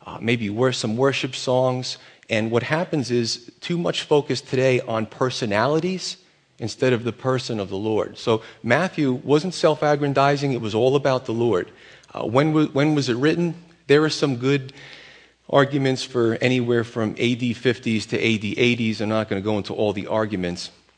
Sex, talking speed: male, 175 wpm